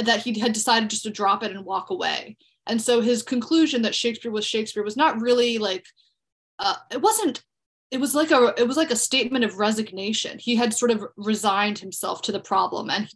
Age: 20-39